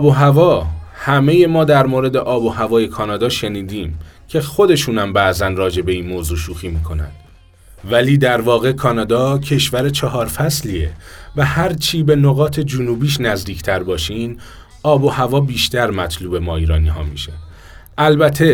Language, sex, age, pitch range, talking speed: Persian, male, 30-49, 90-130 Hz, 145 wpm